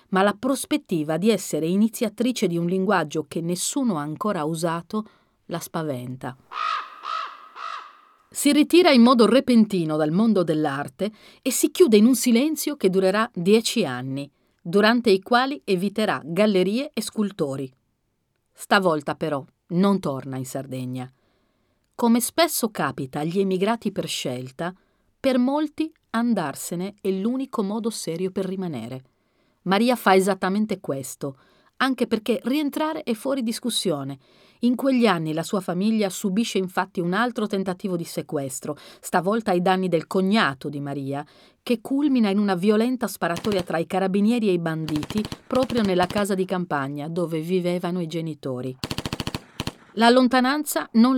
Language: Italian